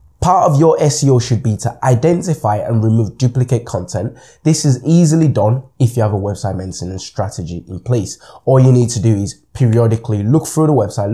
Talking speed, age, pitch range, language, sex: 195 wpm, 20-39, 105-135 Hz, English, male